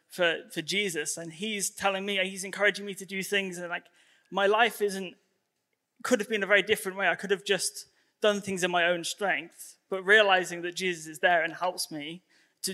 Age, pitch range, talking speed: 20-39, 165-195 Hz, 210 wpm